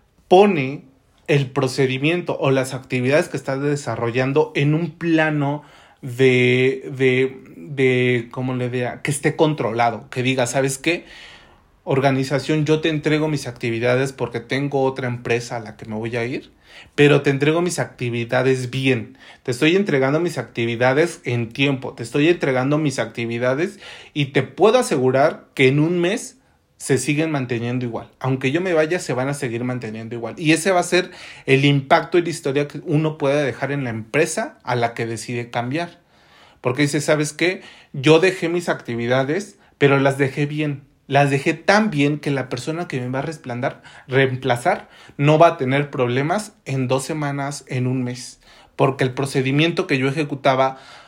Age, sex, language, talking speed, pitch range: 30-49, male, Spanish, 170 wpm, 125-155 Hz